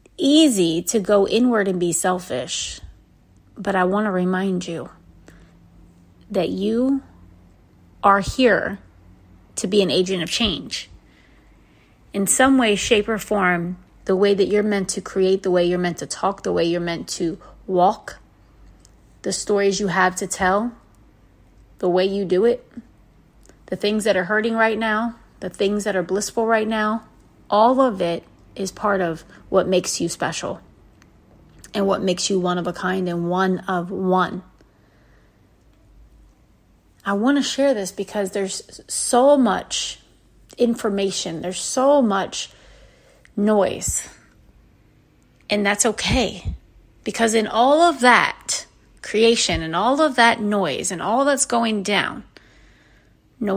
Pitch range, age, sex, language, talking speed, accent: 180-215 Hz, 30-49, female, English, 145 wpm, American